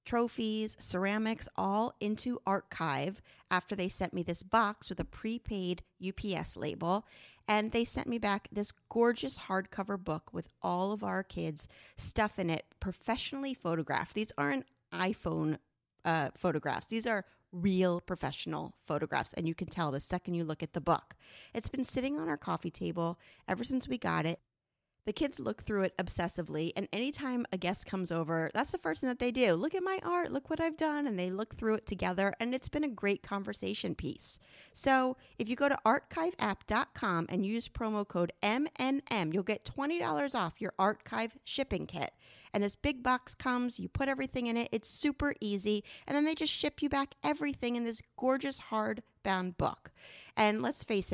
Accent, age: American, 30-49